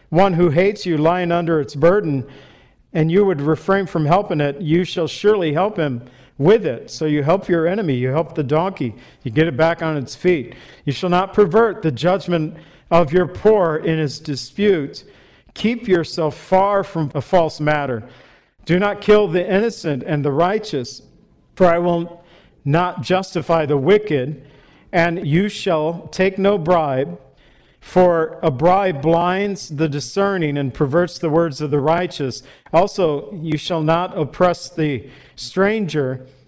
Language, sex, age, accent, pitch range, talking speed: English, male, 50-69, American, 145-180 Hz, 160 wpm